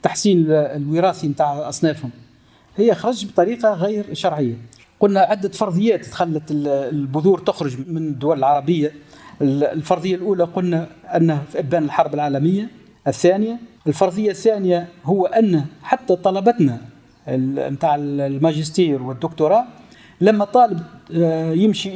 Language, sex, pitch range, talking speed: Arabic, male, 155-205 Hz, 105 wpm